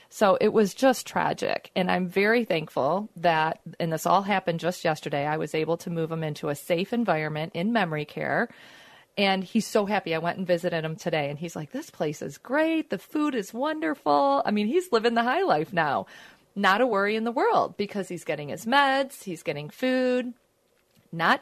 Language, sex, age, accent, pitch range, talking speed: English, female, 40-59, American, 165-250 Hz, 205 wpm